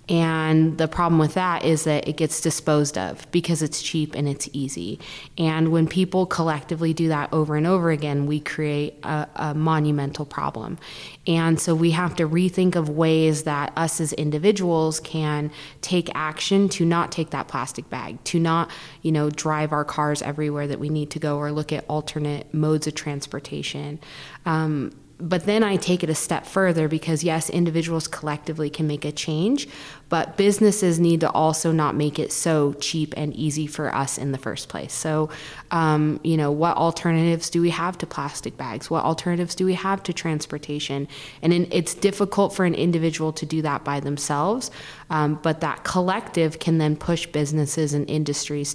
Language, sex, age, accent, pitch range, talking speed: English, female, 20-39, American, 150-165 Hz, 185 wpm